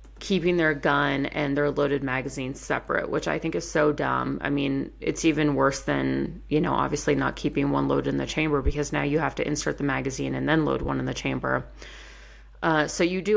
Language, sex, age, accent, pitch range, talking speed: English, female, 30-49, American, 130-155 Hz, 220 wpm